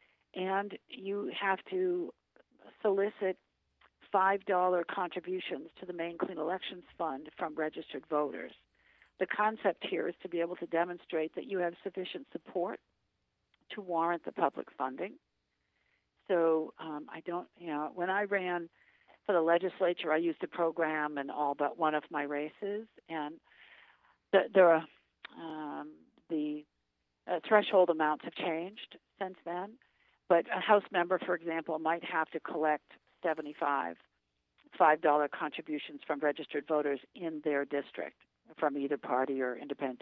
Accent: American